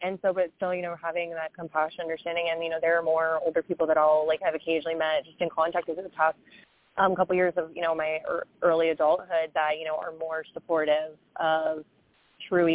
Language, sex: English, female